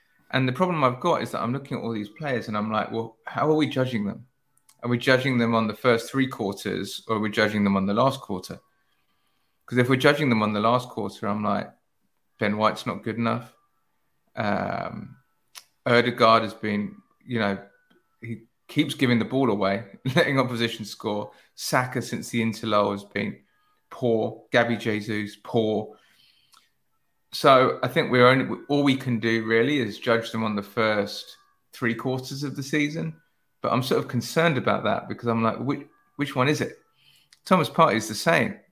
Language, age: English, 20-39